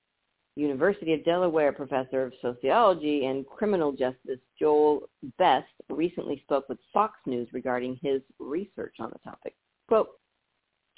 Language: English